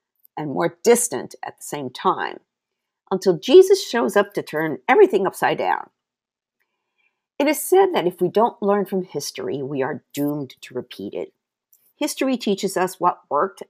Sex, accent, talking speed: female, American, 160 wpm